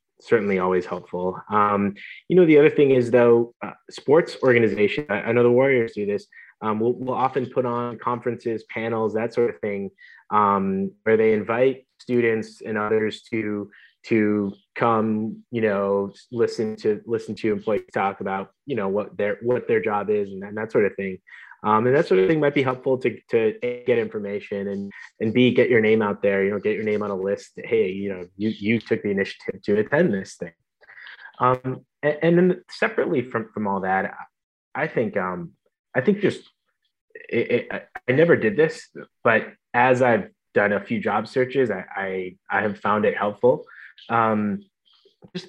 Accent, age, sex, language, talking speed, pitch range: American, 20-39, male, English, 190 wpm, 100-125 Hz